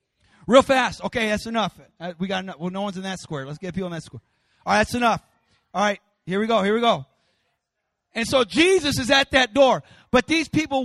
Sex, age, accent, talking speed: male, 40-59, American, 230 wpm